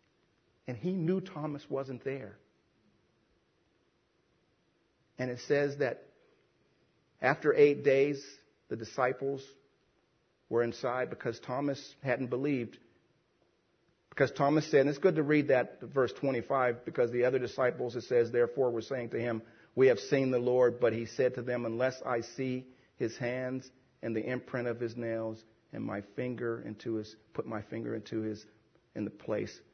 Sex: male